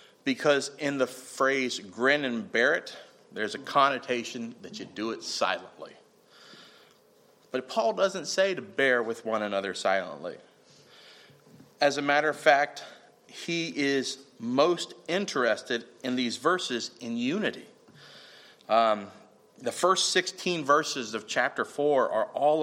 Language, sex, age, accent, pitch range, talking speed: English, male, 40-59, American, 120-170 Hz, 135 wpm